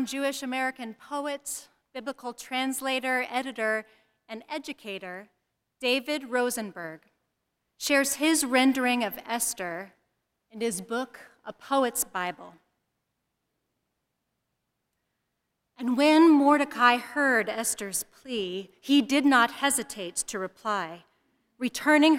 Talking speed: 90 wpm